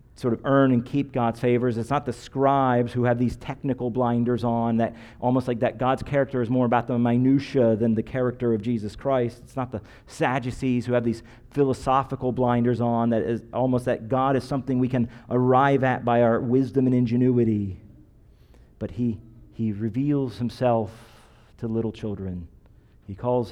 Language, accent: English, American